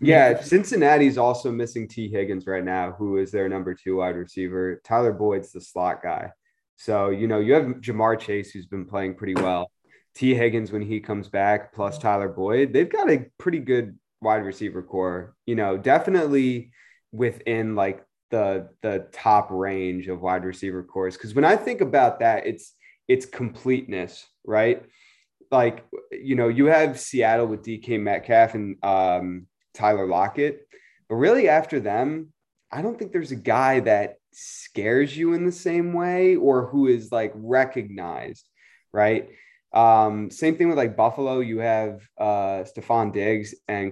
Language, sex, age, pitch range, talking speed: English, male, 20-39, 100-130 Hz, 165 wpm